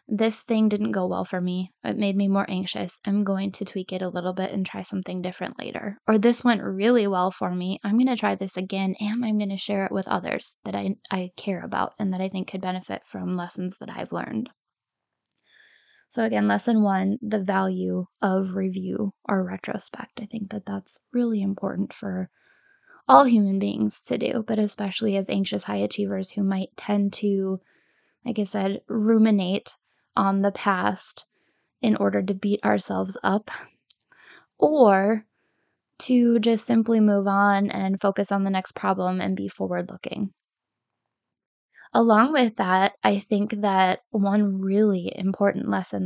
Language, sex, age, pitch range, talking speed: English, female, 10-29, 185-215 Hz, 170 wpm